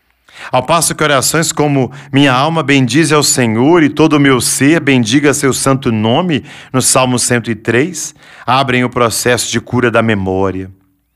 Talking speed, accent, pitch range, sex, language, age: 155 wpm, Brazilian, 110-135 Hz, male, Portuguese, 40-59